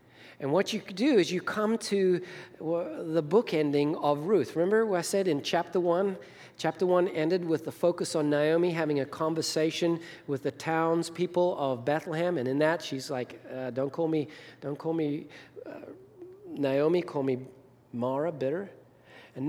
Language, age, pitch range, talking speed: English, 40-59, 150-180 Hz, 170 wpm